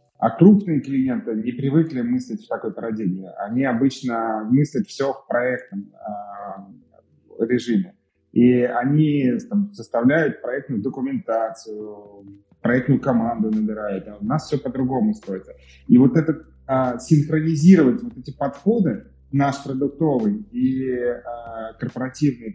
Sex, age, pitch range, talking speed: male, 30-49, 115-155 Hz, 120 wpm